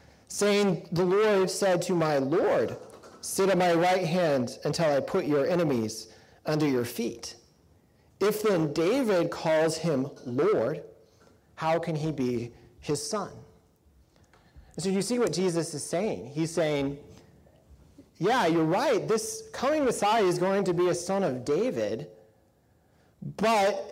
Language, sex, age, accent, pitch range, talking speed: English, male, 40-59, American, 145-185 Hz, 145 wpm